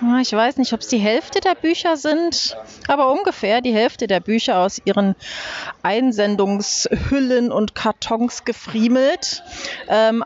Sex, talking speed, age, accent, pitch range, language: female, 135 wpm, 30-49, German, 225-290 Hz, German